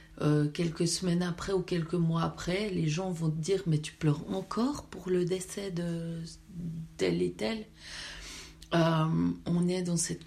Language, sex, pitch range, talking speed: French, female, 150-185 Hz, 170 wpm